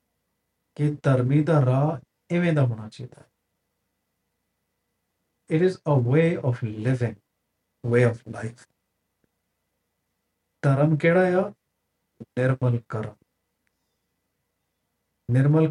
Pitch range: 95-140 Hz